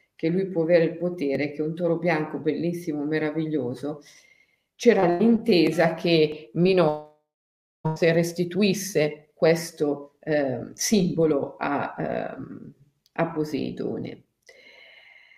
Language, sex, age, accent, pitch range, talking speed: Italian, female, 50-69, native, 155-190 Hz, 100 wpm